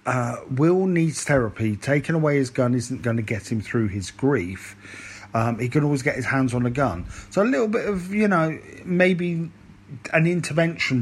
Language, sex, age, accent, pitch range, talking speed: English, male, 40-59, British, 105-145 Hz, 195 wpm